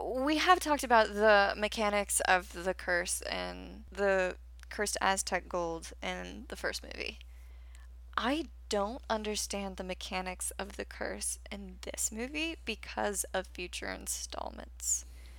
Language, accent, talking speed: English, American, 130 wpm